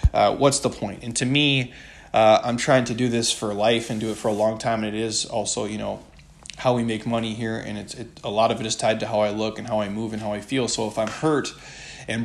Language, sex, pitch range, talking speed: English, male, 110-130 Hz, 290 wpm